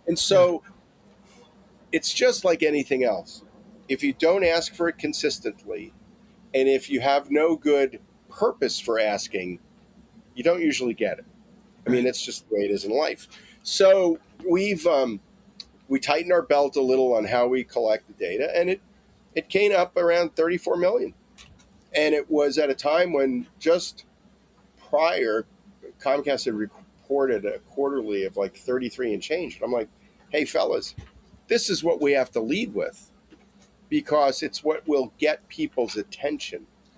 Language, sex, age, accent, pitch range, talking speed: English, male, 40-59, American, 130-200 Hz, 160 wpm